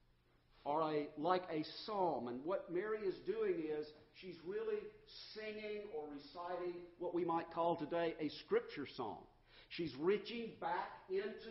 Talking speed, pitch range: 140 wpm, 140-190 Hz